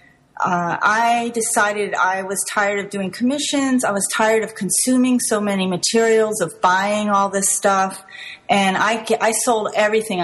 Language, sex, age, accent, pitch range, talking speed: English, female, 40-59, American, 175-210 Hz, 160 wpm